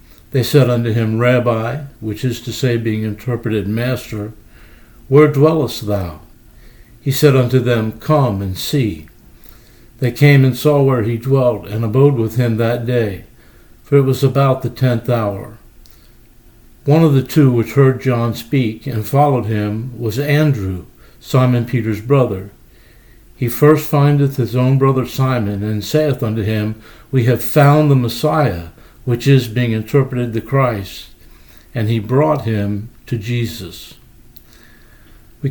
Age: 60-79